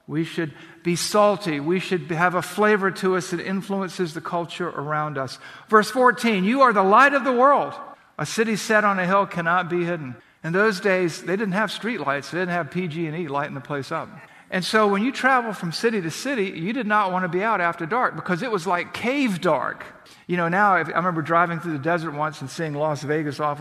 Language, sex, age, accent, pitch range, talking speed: English, male, 50-69, American, 160-200 Hz, 225 wpm